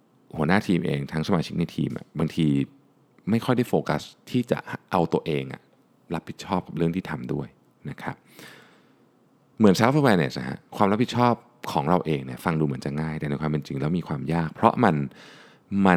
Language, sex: Thai, male